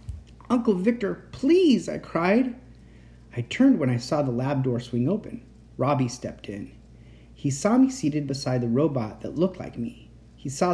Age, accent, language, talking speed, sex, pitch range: 30-49, American, English, 175 wpm, male, 120-190 Hz